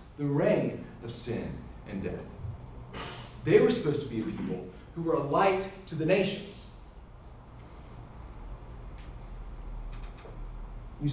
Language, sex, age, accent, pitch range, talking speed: English, male, 40-59, American, 135-210 Hz, 115 wpm